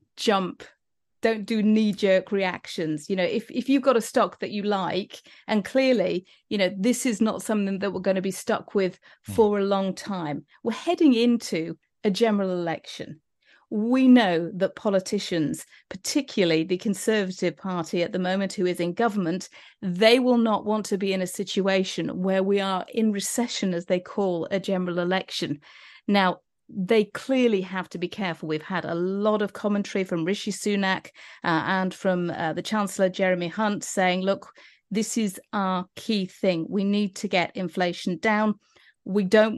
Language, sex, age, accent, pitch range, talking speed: English, female, 40-59, British, 180-210 Hz, 175 wpm